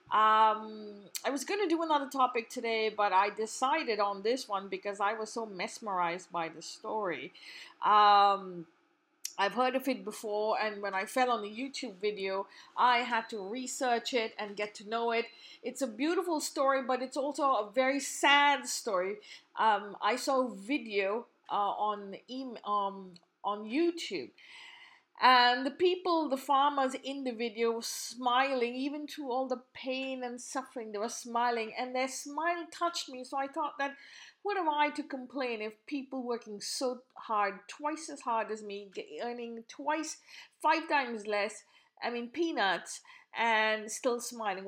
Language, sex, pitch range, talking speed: English, female, 210-275 Hz, 165 wpm